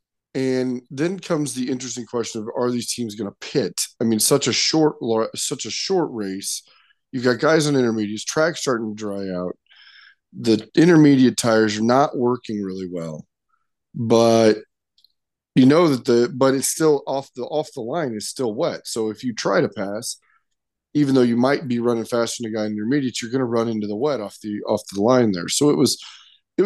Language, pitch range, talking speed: English, 115-145 Hz, 205 wpm